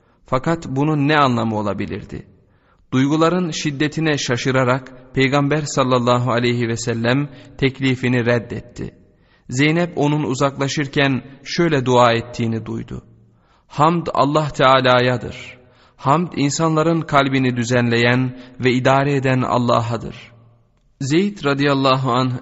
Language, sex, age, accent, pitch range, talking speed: Turkish, male, 30-49, native, 120-145 Hz, 95 wpm